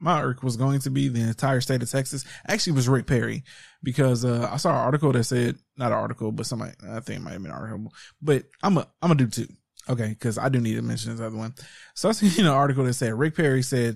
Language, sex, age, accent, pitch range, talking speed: English, male, 20-39, American, 115-140 Hz, 270 wpm